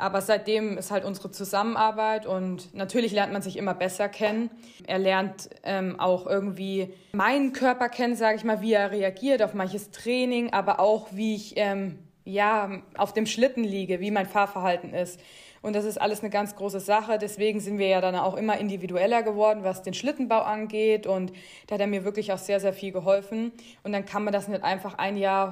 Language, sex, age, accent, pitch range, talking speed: German, female, 20-39, German, 190-215 Hz, 200 wpm